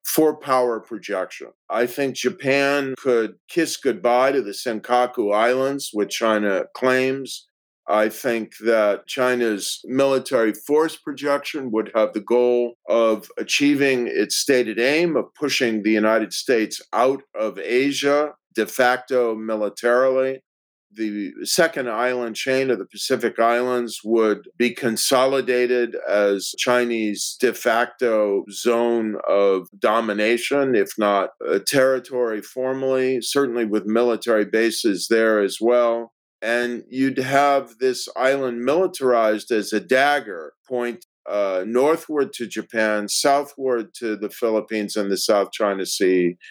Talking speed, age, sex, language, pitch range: 125 wpm, 50-69, male, English, 110-130 Hz